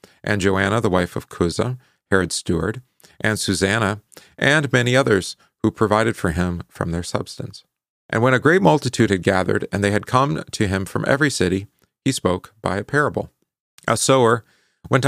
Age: 40-59